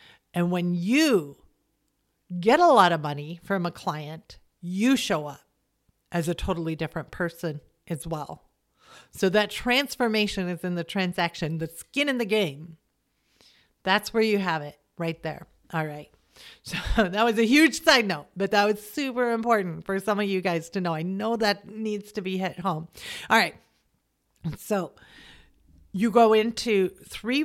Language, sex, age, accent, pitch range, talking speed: English, female, 40-59, American, 170-225 Hz, 165 wpm